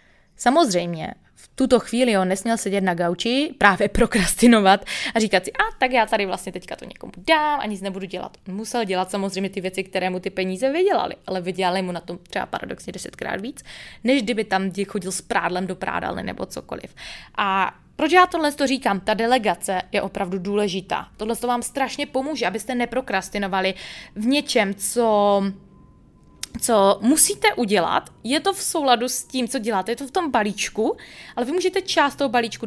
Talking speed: 180 wpm